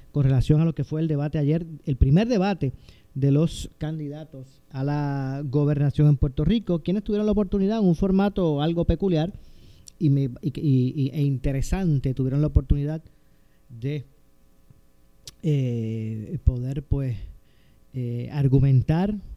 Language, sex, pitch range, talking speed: Spanish, male, 135-165 Hz, 145 wpm